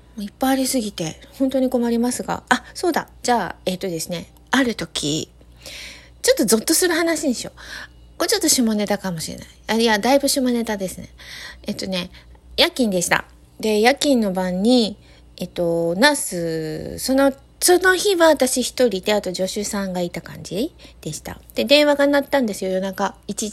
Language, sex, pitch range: Japanese, female, 185-280 Hz